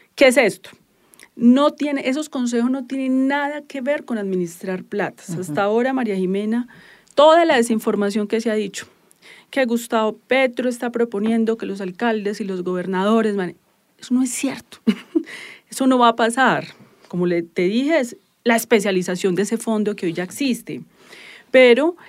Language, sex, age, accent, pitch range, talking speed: English, female, 30-49, Colombian, 185-240 Hz, 170 wpm